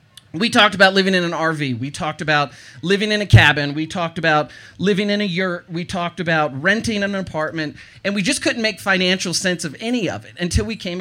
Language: English